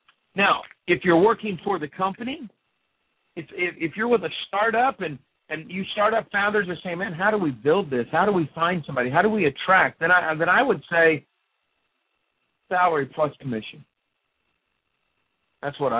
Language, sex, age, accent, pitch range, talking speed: English, male, 50-69, American, 135-185 Hz, 175 wpm